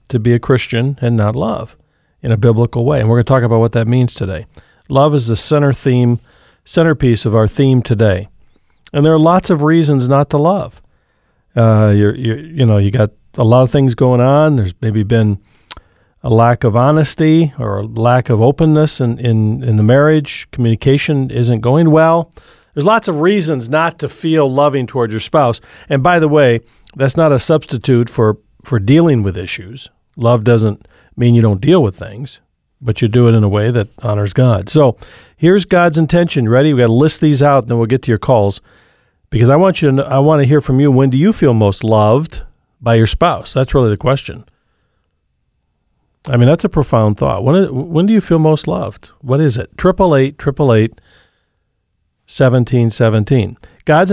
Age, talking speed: 50-69, 195 wpm